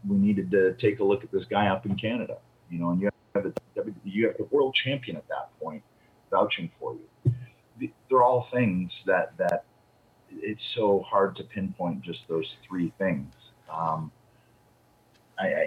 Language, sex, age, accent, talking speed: English, male, 30-49, American, 170 wpm